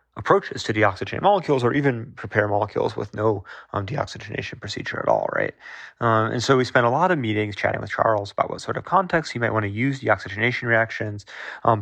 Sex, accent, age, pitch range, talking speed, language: male, American, 30-49, 110-140 Hz, 210 wpm, English